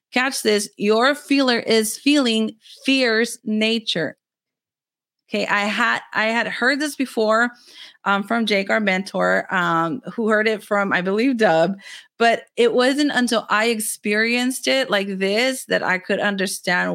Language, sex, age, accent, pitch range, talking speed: English, female, 30-49, American, 185-230 Hz, 150 wpm